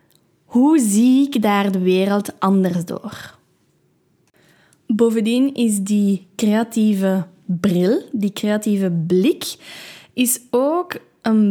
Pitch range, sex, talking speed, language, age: 200-245 Hz, female, 100 wpm, Dutch, 10-29